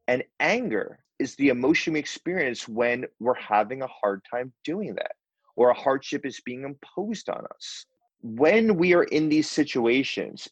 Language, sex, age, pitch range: English, male, 30-49, 110-175 Hz